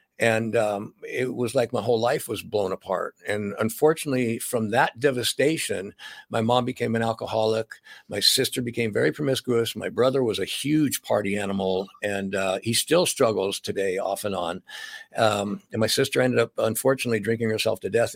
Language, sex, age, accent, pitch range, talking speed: English, male, 60-79, American, 110-135 Hz, 175 wpm